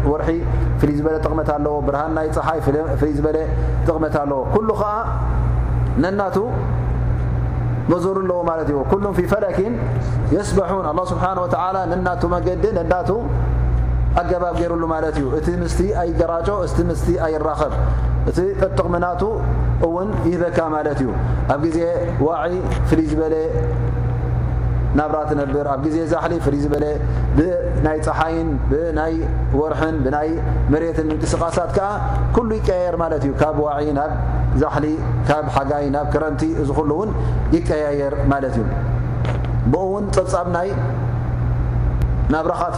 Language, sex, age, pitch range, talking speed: Amharic, male, 30-49, 120-160 Hz, 110 wpm